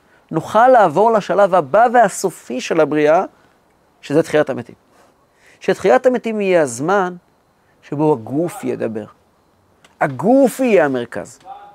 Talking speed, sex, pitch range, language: 100 wpm, male, 140-205 Hz, Hebrew